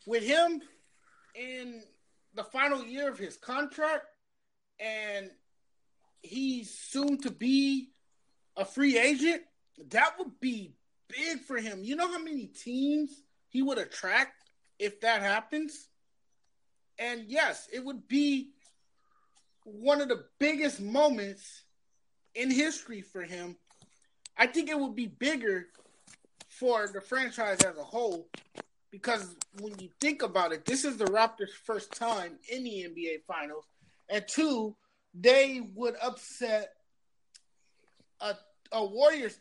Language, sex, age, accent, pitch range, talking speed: English, male, 30-49, American, 210-290 Hz, 130 wpm